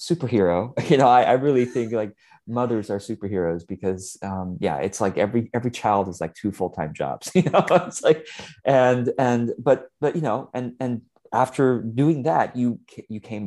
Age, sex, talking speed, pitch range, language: 30-49, male, 185 wpm, 85-105 Hz, English